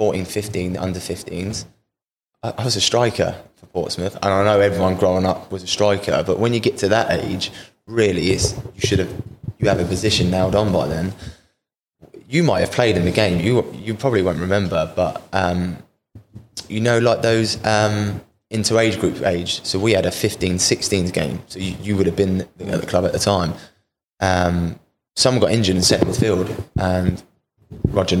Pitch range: 90-105 Hz